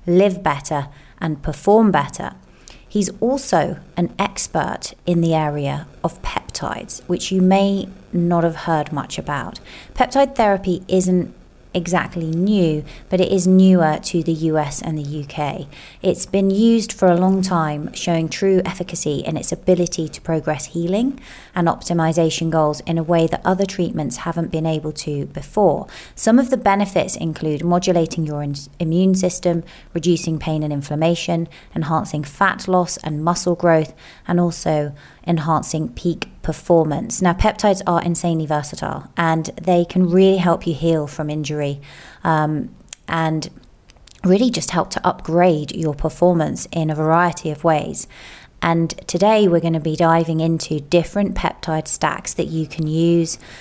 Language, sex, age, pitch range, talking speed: English, female, 30-49, 155-180 Hz, 150 wpm